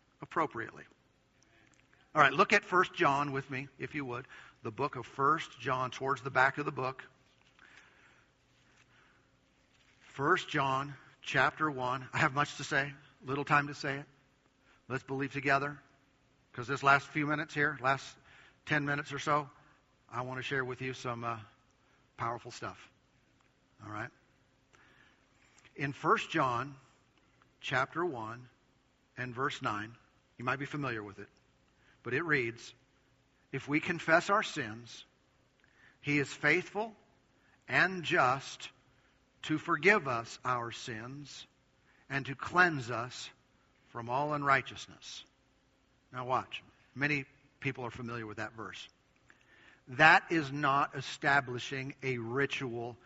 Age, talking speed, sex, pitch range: 50-69, 130 wpm, male, 125-145 Hz